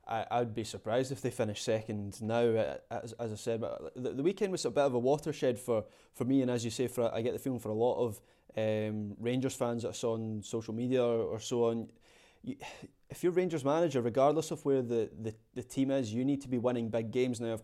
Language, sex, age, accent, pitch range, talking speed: English, male, 20-39, British, 115-135 Hz, 250 wpm